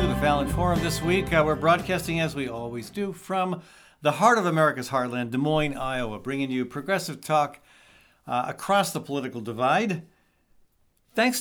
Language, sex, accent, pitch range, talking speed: English, male, American, 140-180 Hz, 165 wpm